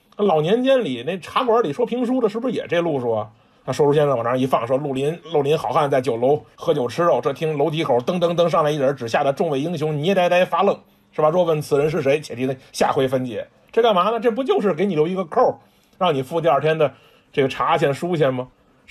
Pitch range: 135-205 Hz